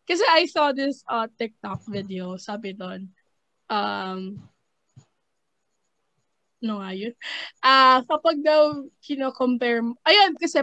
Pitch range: 205-265 Hz